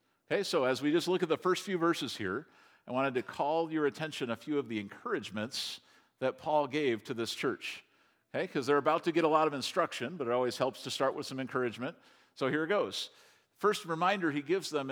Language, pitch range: English, 130-170 Hz